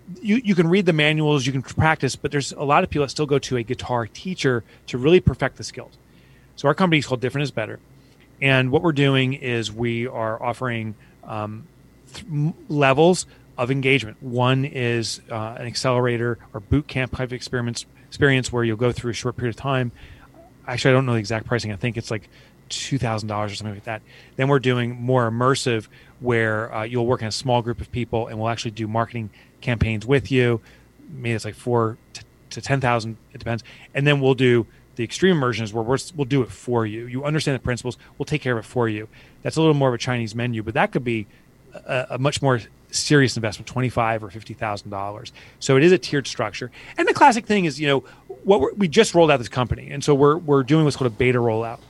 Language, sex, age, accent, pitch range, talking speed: English, male, 30-49, American, 115-140 Hz, 220 wpm